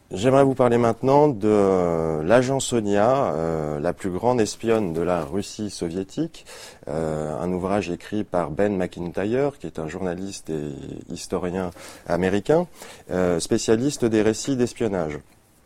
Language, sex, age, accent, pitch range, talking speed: French, male, 30-49, French, 85-115 Hz, 135 wpm